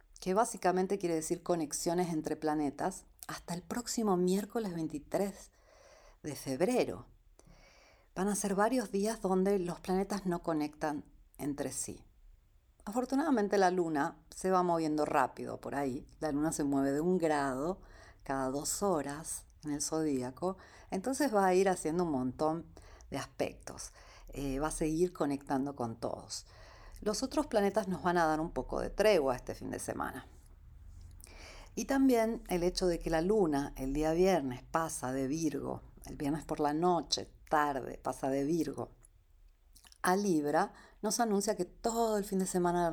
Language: Spanish